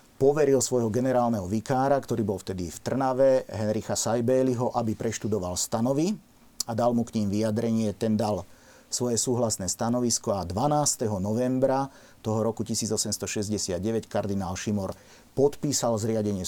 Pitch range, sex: 100-120 Hz, male